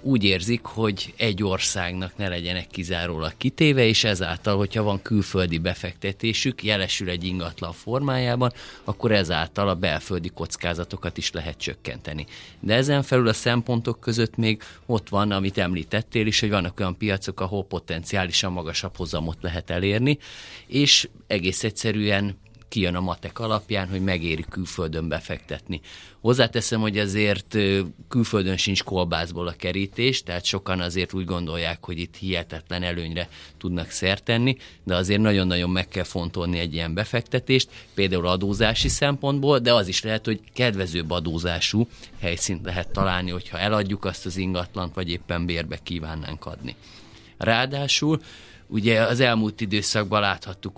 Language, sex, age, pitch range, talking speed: Hungarian, male, 30-49, 90-110 Hz, 140 wpm